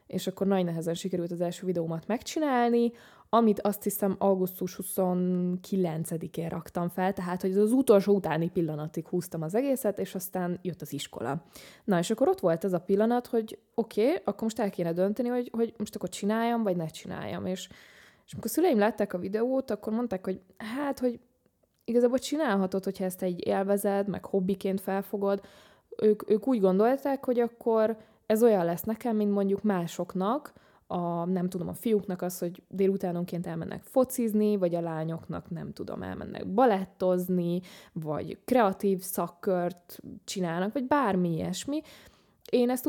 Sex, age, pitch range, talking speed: female, 20-39, 180-220 Hz, 160 wpm